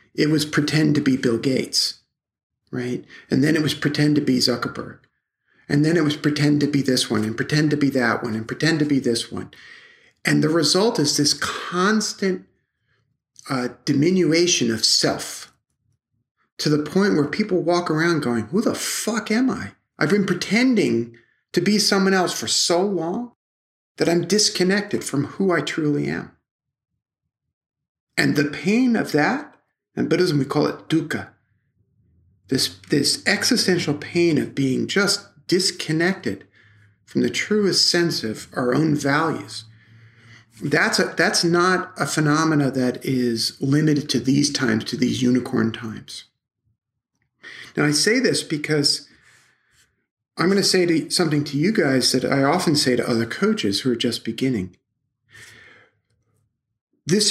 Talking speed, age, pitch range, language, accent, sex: 150 wpm, 50-69, 125-175 Hz, English, American, male